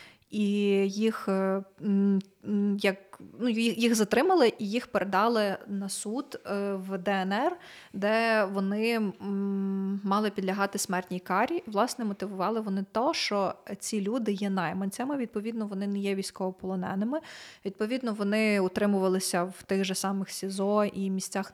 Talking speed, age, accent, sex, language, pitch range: 120 wpm, 20-39, native, female, Ukrainian, 190-215 Hz